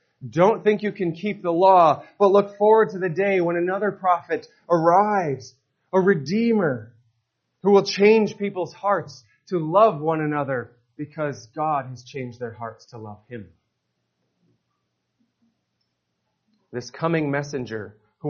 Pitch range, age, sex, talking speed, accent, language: 140-205 Hz, 30-49, male, 135 wpm, American, English